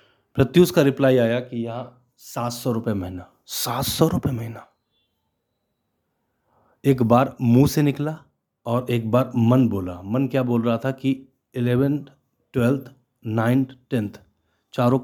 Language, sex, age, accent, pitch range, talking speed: Hindi, male, 30-49, native, 110-130 Hz, 130 wpm